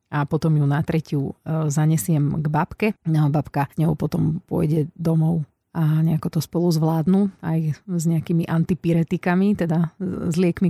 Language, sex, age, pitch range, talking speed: Slovak, female, 30-49, 160-195 Hz, 145 wpm